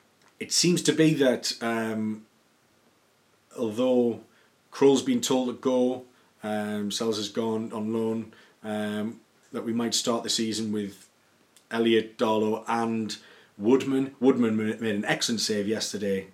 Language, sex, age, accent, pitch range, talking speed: English, male, 30-49, British, 110-130 Hz, 135 wpm